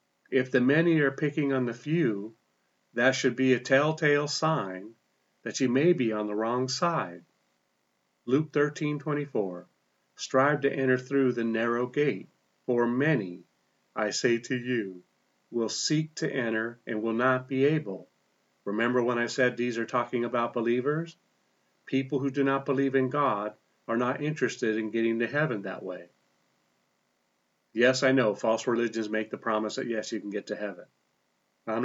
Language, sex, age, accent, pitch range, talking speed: English, male, 40-59, American, 110-135 Hz, 165 wpm